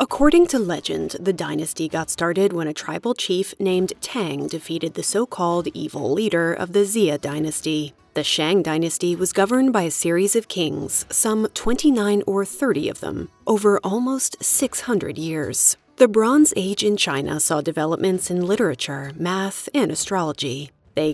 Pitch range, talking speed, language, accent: 155-210 Hz, 155 wpm, English, American